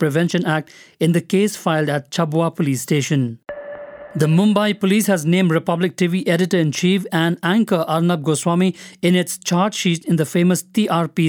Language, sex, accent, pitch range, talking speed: English, male, Indian, 160-190 Hz, 160 wpm